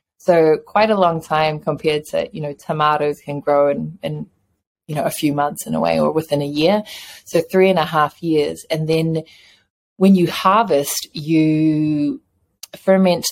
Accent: Australian